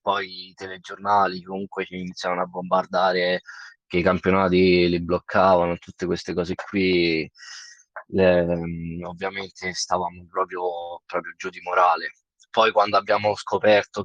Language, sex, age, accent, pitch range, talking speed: Italian, male, 20-39, native, 90-105 Hz, 125 wpm